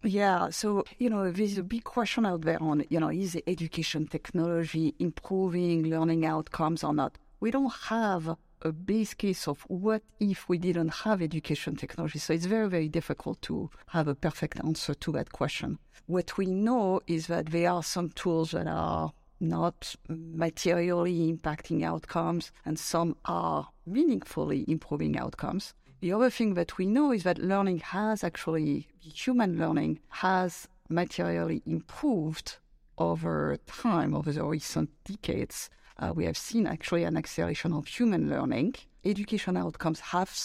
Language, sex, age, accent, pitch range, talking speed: English, female, 50-69, French, 155-195 Hz, 155 wpm